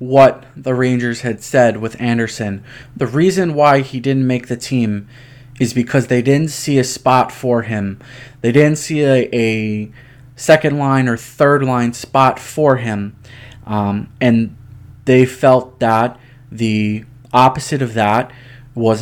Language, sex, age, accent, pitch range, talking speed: English, male, 20-39, American, 115-130 Hz, 150 wpm